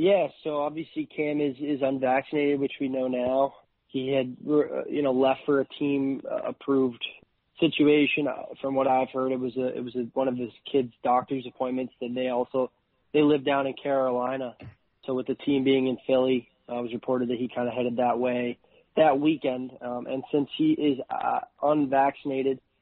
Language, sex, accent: English, male, American